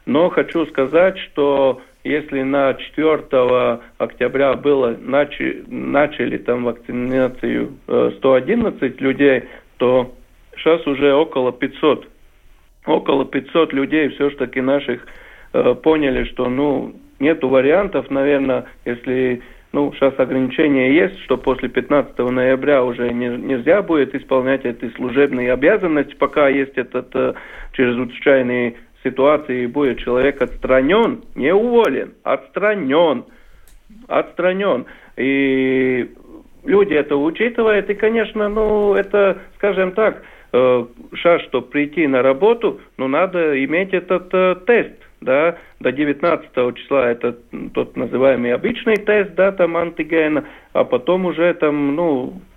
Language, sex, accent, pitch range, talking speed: Russian, male, native, 125-180 Hz, 115 wpm